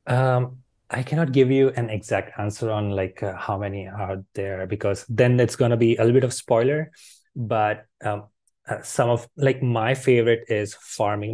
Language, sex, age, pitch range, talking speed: English, male, 20-39, 105-130 Hz, 190 wpm